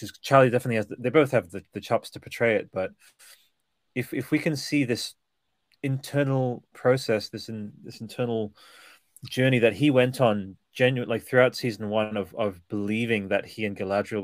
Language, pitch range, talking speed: English, 105-125 Hz, 175 wpm